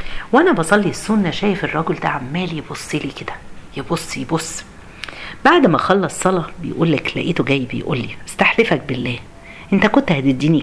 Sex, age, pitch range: female, 40-59, 160-225 Hz